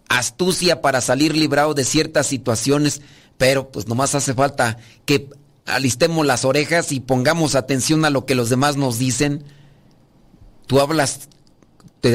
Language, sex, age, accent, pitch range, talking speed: Spanish, male, 40-59, Mexican, 135-180 Hz, 145 wpm